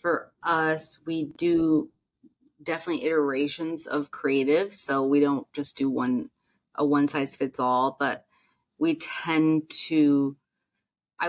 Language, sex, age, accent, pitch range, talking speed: English, female, 30-49, American, 140-160 Hz, 110 wpm